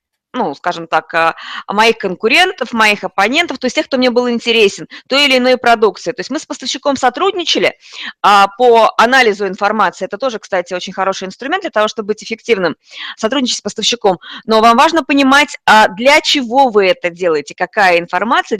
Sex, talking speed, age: female, 170 wpm, 20-39